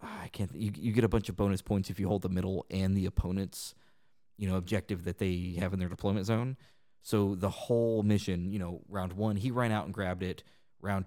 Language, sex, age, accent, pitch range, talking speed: English, male, 30-49, American, 90-110 Hz, 235 wpm